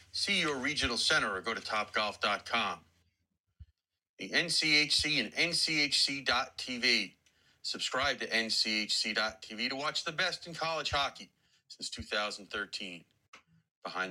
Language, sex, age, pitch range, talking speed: English, male, 40-59, 95-125 Hz, 105 wpm